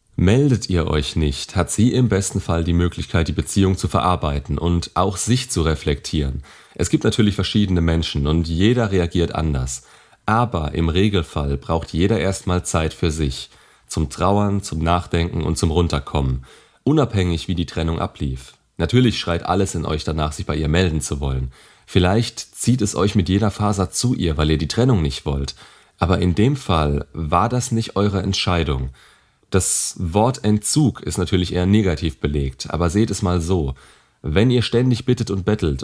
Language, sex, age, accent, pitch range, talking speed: German, male, 30-49, German, 80-100 Hz, 175 wpm